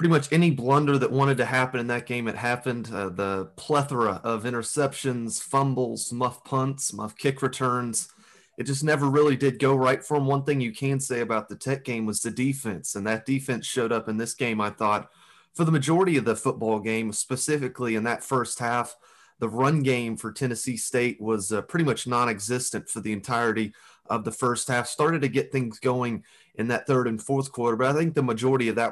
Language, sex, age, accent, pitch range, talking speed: English, male, 30-49, American, 115-135 Hz, 215 wpm